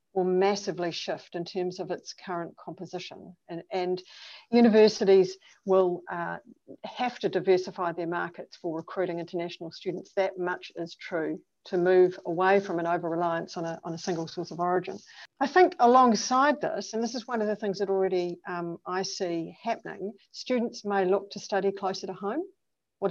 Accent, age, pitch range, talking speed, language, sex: Australian, 50-69, 180-215 Hz, 170 wpm, English, female